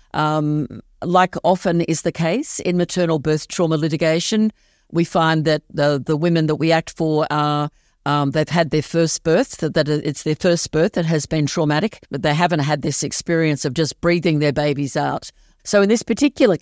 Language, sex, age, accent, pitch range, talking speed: English, female, 50-69, Australian, 150-175 Hz, 195 wpm